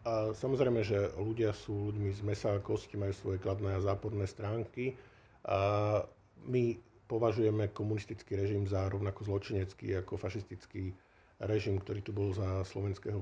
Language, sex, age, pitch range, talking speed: Slovak, male, 50-69, 95-110 Hz, 130 wpm